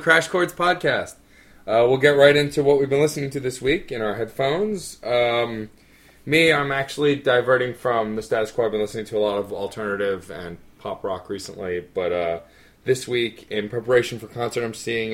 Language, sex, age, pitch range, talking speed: English, male, 20-39, 95-120 Hz, 195 wpm